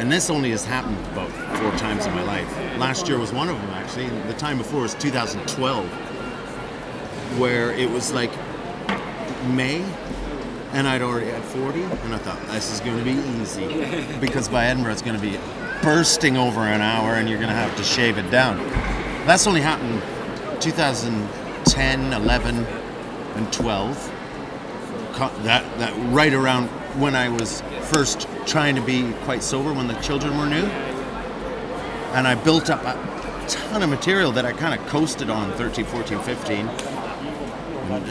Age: 30-49